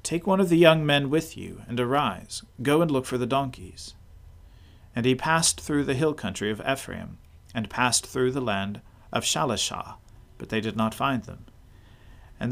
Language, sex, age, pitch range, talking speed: English, male, 40-59, 105-140 Hz, 185 wpm